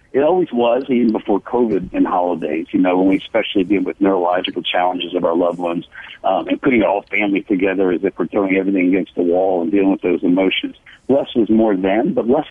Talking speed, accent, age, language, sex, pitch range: 220 wpm, American, 60-79, English, male, 100-130 Hz